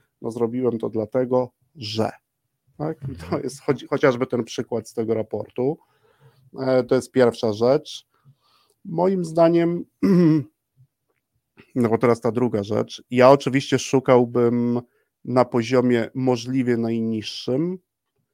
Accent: native